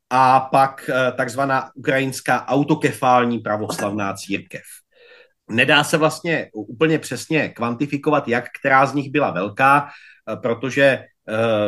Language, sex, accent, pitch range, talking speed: Czech, male, native, 125-155 Hz, 105 wpm